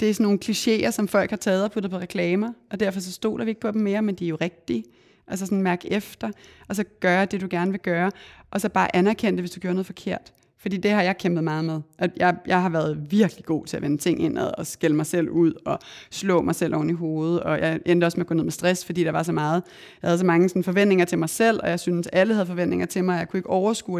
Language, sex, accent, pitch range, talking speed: Danish, female, native, 170-205 Hz, 295 wpm